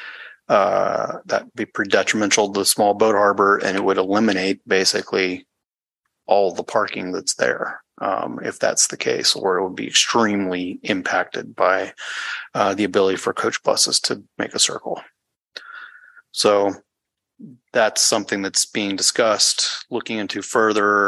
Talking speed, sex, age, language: 145 wpm, male, 30-49, English